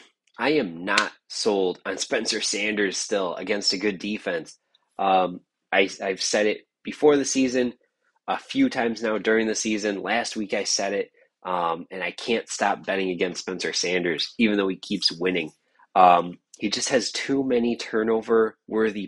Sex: male